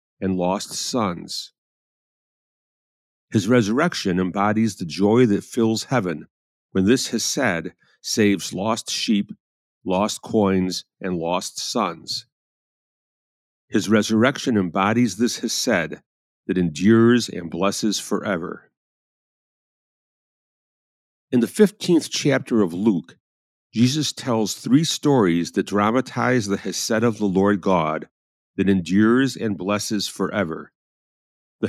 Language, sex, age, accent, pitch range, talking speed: English, male, 50-69, American, 95-125 Hz, 105 wpm